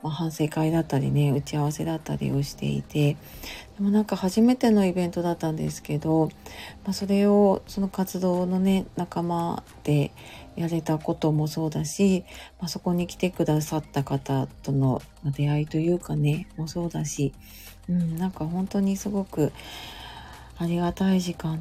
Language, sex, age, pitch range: Japanese, female, 40-59, 150-190 Hz